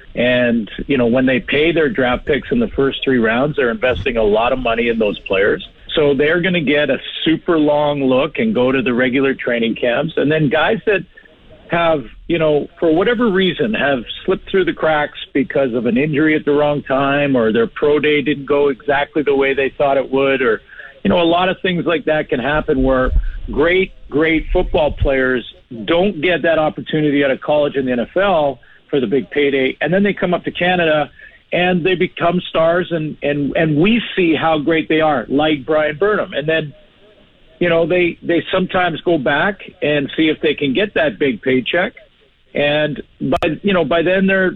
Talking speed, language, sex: 205 wpm, English, male